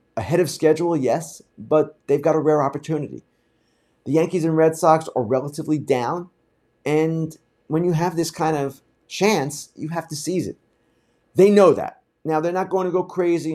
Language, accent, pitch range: English, American, 120-160 Hz